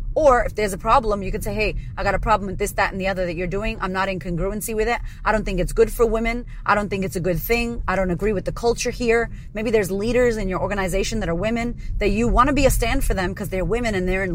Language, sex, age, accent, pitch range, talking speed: English, female, 30-49, American, 175-220 Hz, 305 wpm